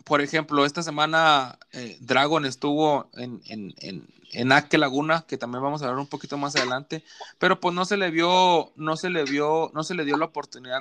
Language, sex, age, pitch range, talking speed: Spanish, male, 20-39, 140-170 Hz, 210 wpm